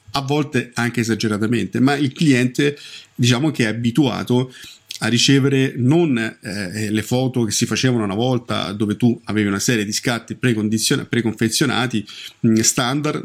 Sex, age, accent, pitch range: male, 40-59, native, 110-135 Hz